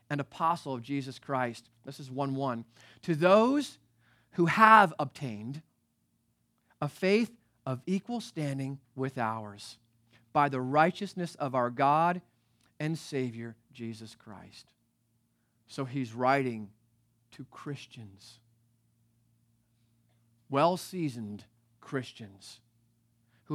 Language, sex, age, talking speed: English, male, 30-49, 100 wpm